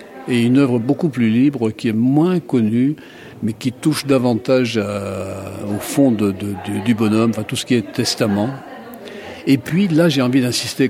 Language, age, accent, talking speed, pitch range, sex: French, 60-79, French, 185 wpm, 110-140 Hz, male